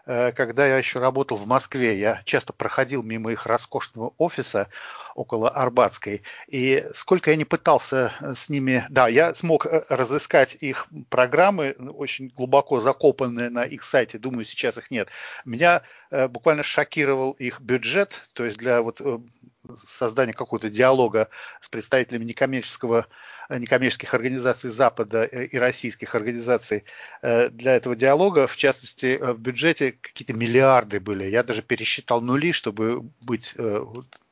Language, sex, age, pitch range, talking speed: English, male, 40-59, 120-140 Hz, 135 wpm